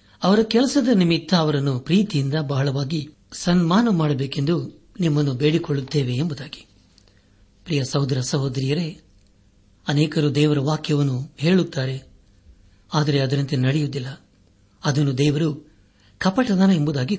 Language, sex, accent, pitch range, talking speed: Kannada, male, native, 110-170 Hz, 75 wpm